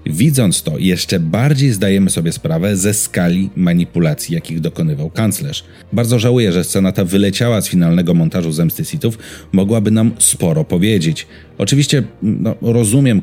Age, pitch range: 30-49, 95-145 Hz